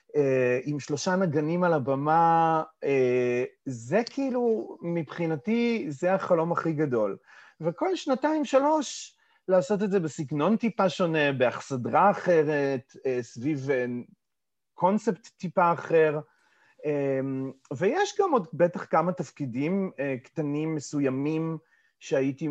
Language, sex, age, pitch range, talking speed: Hebrew, male, 30-49, 130-190 Hz, 95 wpm